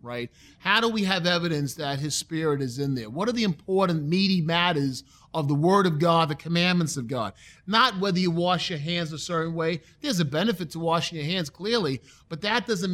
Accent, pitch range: American, 150-200 Hz